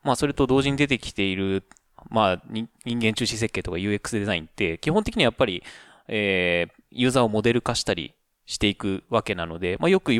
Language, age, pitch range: Japanese, 20-39, 100-140 Hz